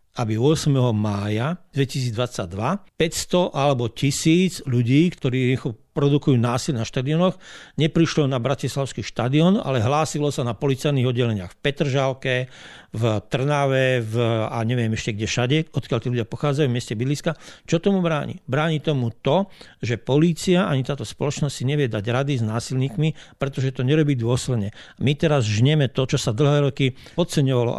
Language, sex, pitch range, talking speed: Slovak, male, 125-160 Hz, 150 wpm